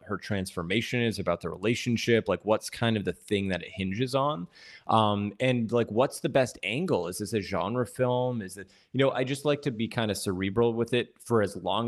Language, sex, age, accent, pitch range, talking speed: English, male, 20-39, American, 95-115 Hz, 225 wpm